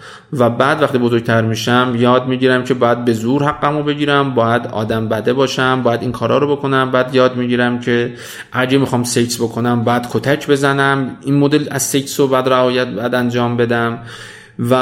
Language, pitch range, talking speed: Persian, 115-135 Hz, 180 wpm